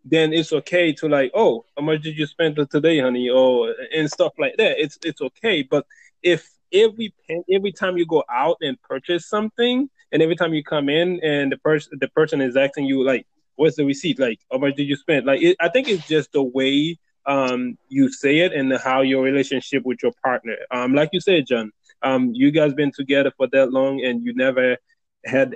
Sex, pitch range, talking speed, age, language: male, 130-165 Hz, 220 wpm, 20-39, English